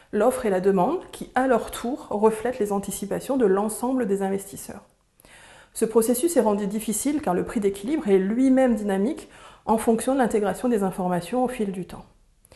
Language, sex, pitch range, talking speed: French, female, 195-240 Hz, 175 wpm